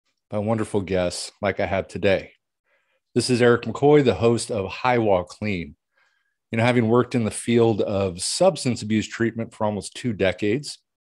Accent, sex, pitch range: American, male, 95-120 Hz